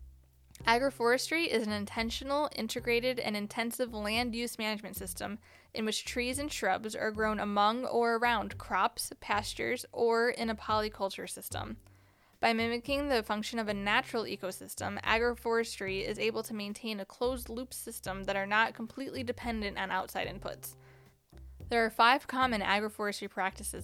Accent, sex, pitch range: American, female, 190-235 Hz